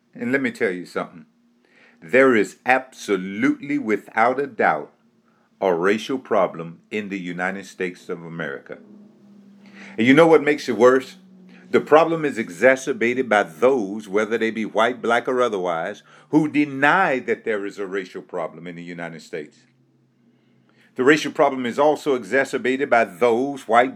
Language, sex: English, male